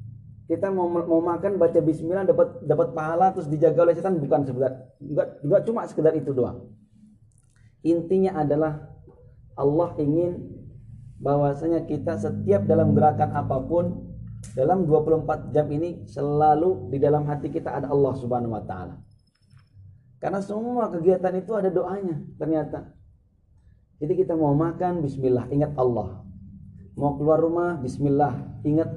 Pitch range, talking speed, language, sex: 130-175 Hz, 135 wpm, Indonesian, male